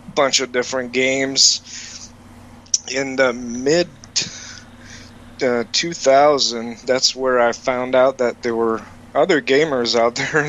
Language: English